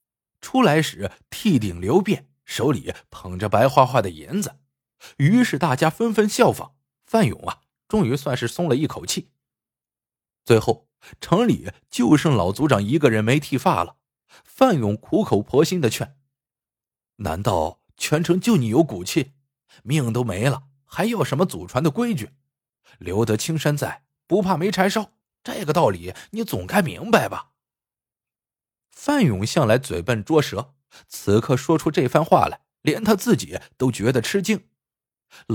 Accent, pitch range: native, 115-170 Hz